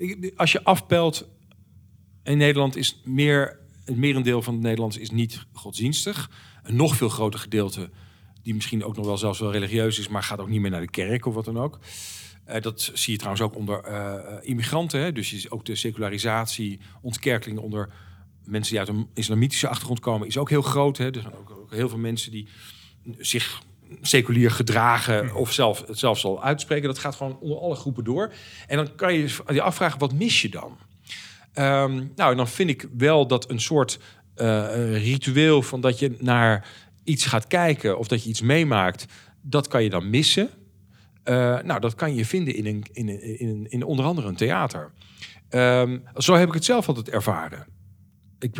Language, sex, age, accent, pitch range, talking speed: Dutch, male, 50-69, Dutch, 105-135 Hz, 195 wpm